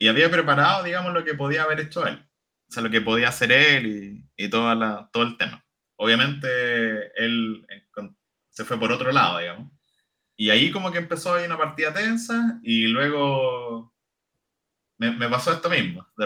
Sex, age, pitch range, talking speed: male, 20-39, 115-155 Hz, 180 wpm